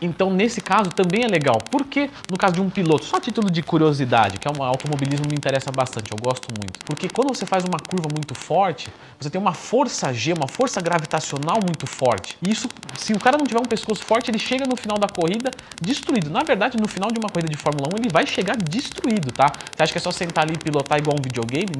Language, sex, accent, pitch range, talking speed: Portuguese, male, Brazilian, 140-220 Hz, 245 wpm